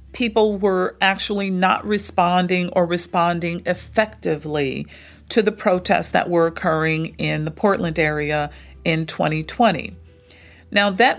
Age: 40-59